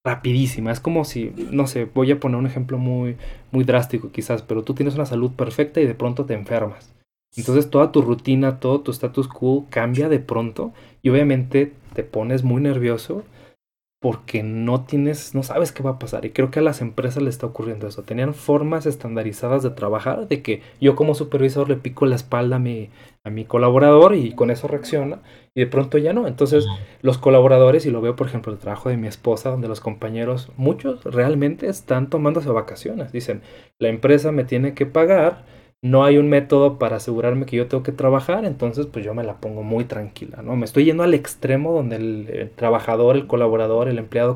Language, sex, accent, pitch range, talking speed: Spanish, male, Mexican, 115-140 Hz, 205 wpm